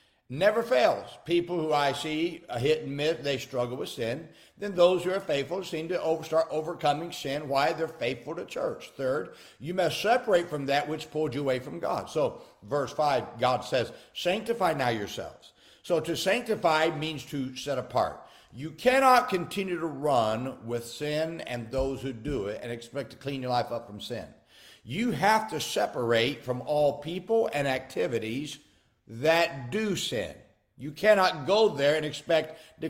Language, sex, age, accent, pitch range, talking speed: English, male, 50-69, American, 140-190 Hz, 175 wpm